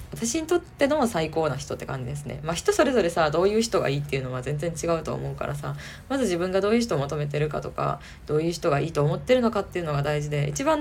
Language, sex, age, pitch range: Japanese, female, 20-39, 145-195 Hz